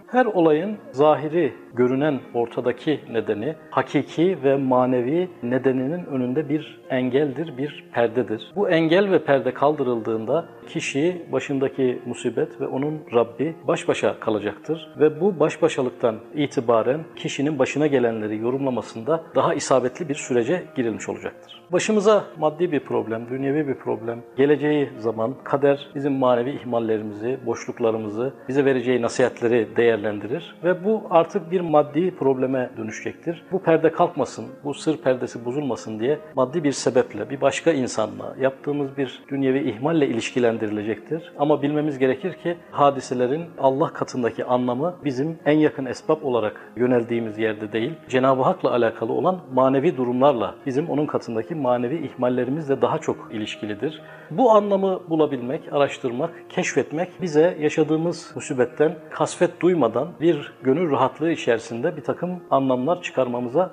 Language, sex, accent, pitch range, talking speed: Turkish, male, native, 125-160 Hz, 130 wpm